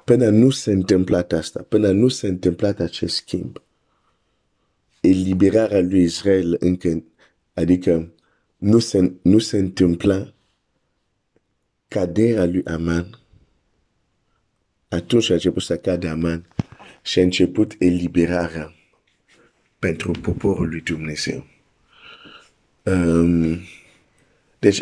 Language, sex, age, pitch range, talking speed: Romanian, male, 50-69, 85-110 Hz, 90 wpm